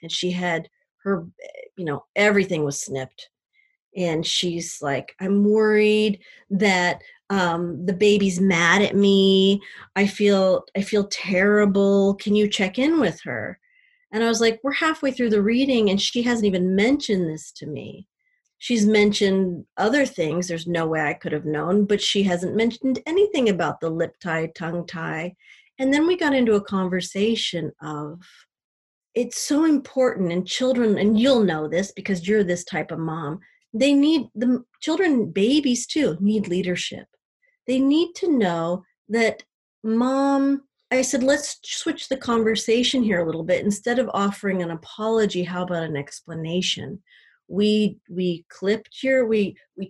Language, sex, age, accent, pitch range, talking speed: English, female, 30-49, American, 180-250 Hz, 160 wpm